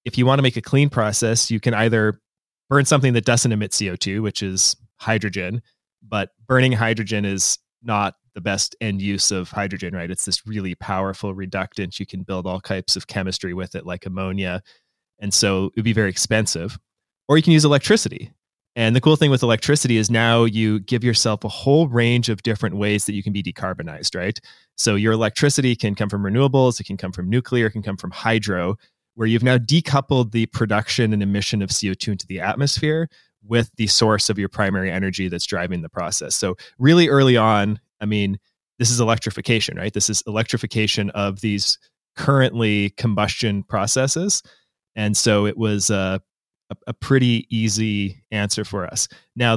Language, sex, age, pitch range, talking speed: English, male, 20-39, 100-120 Hz, 185 wpm